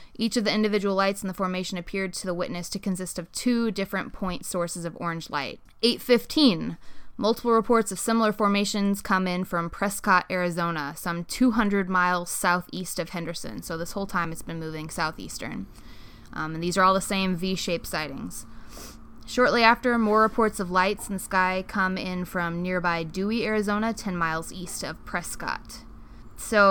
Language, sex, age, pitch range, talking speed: English, female, 20-39, 175-205 Hz, 175 wpm